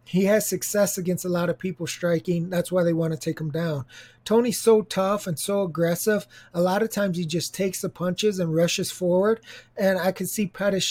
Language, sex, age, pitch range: English, male, 20-39, 160-185 Hz